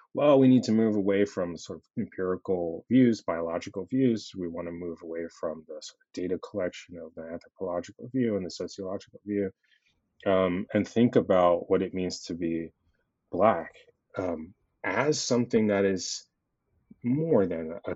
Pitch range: 85-100 Hz